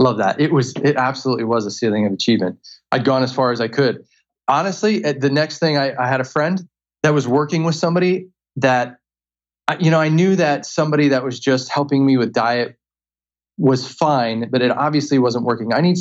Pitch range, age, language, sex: 120-155 Hz, 30-49, English, male